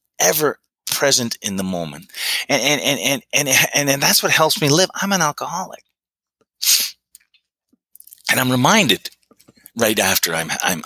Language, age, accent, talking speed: English, 30-49, American, 150 wpm